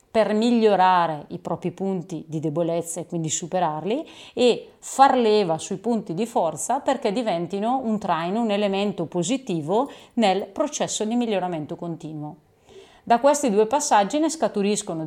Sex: female